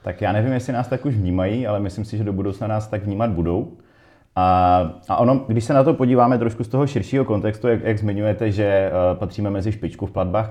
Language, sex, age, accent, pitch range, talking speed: Czech, male, 30-49, native, 95-110 Hz, 225 wpm